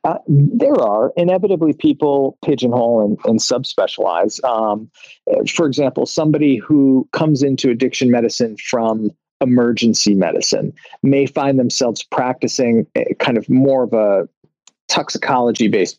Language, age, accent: English, 40-59, American